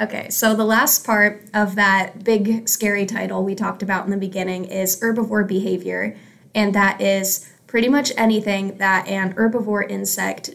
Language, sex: English, female